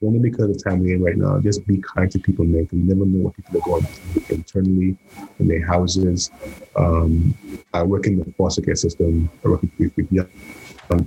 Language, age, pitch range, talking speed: English, 30-49, 85-100 Hz, 210 wpm